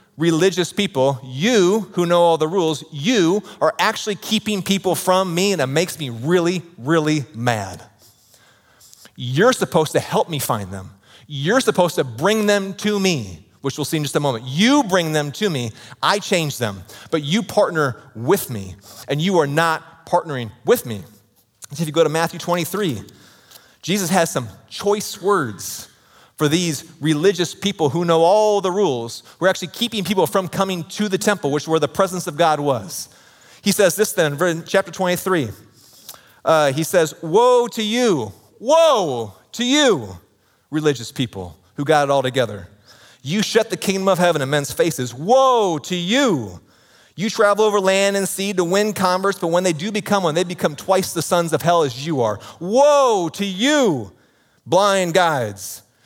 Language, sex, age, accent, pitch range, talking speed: English, male, 30-49, American, 135-195 Hz, 175 wpm